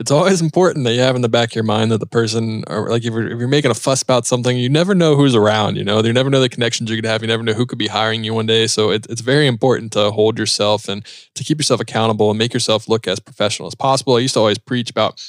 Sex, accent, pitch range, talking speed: male, American, 110-125 Hz, 310 wpm